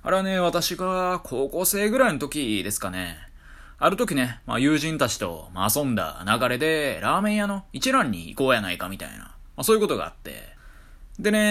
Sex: male